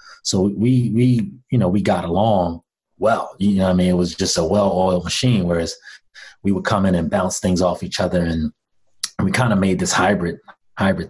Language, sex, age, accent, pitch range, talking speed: English, male, 30-49, American, 90-105 Hz, 210 wpm